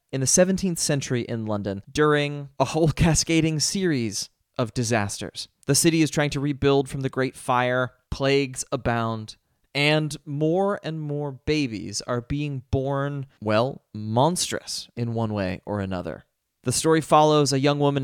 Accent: American